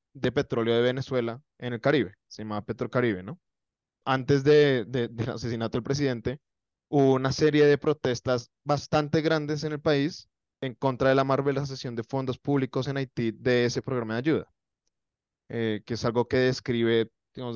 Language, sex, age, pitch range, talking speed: Spanish, male, 20-39, 115-135 Hz, 175 wpm